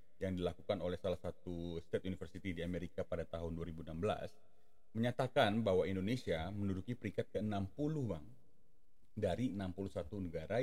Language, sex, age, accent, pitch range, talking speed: Indonesian, male, 30-49, native, 90-115 Hz, 125 wpm